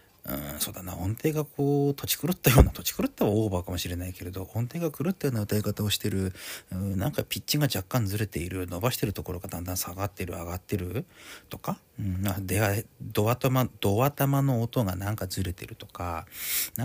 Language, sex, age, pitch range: Japanese, male, 40-59, 90-125 Hz